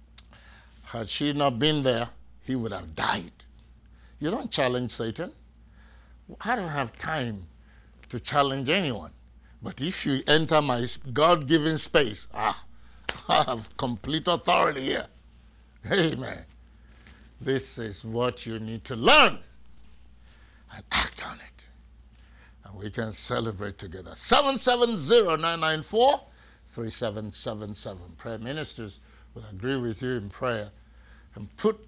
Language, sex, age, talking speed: English, male, 60-79, 135 wpm